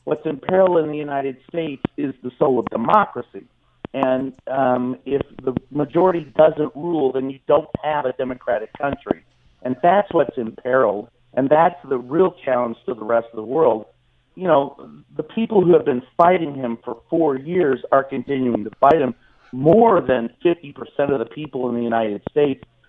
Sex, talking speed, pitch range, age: male, 185 wpm, 120-150 Hz, 50-69